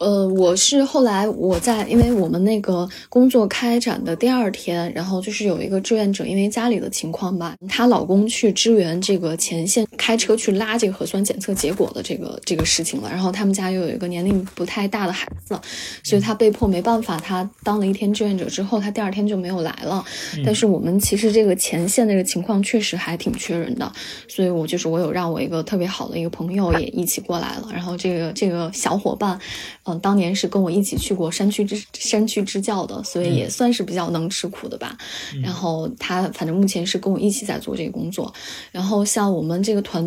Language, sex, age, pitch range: Chinese, female, 10-29, 180-220 Hz